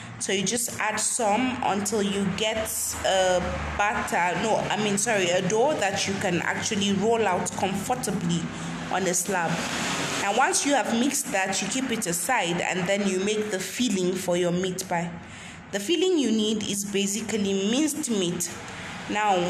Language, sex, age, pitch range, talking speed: English, female, 20-39, 185-230 Hz, 170 wpm